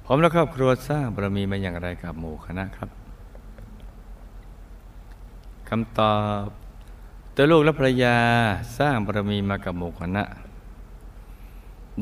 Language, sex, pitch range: Thai, male, 95-120 Hz